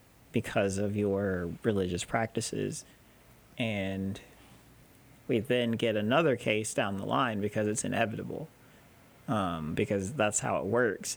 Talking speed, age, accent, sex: 125 wpm, 30-49, American, male